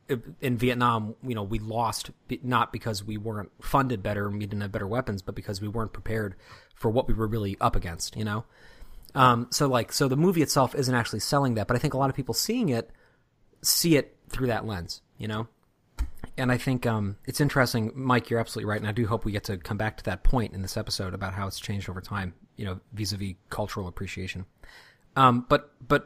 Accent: American